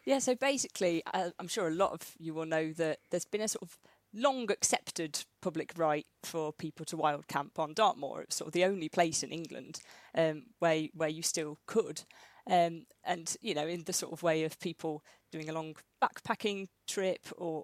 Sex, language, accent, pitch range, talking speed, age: female, English, British, 160-185 Hz, 205 wpm, 30-49